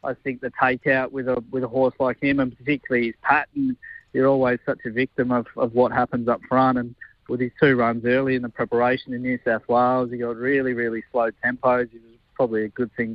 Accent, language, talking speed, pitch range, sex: Australian, English, 235 wpm, 125-140 Hz, male